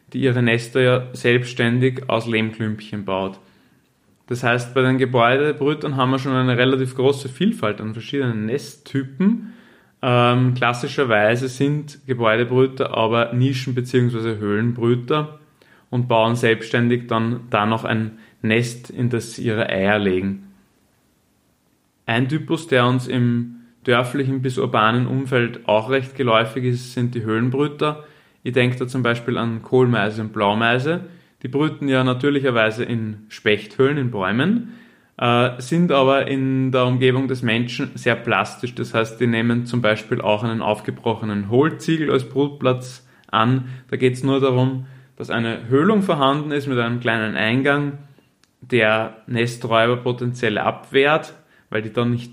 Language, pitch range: German, 115-135 Hz